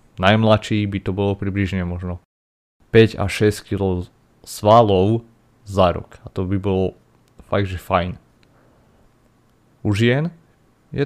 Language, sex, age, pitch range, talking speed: Slovak, male, 30-49, 95-115 Hz, 120 wpm